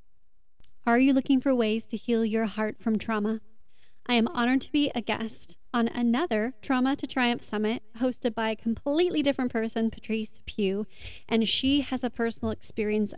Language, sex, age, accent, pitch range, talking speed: English, female, 30-49, American, 220-255 Hz, 175 wpm